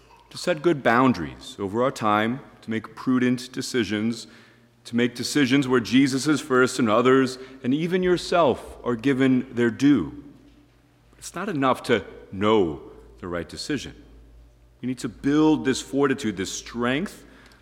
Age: 40-59